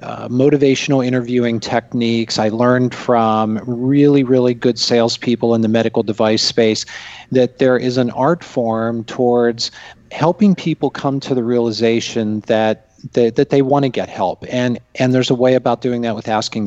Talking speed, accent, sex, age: 170 wpm, American, male, 40-59